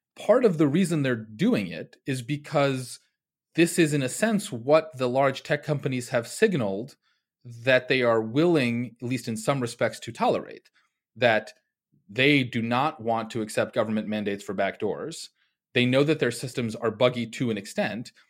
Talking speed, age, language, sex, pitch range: 175 wpm, 30-49, English, male, 110-145 Hz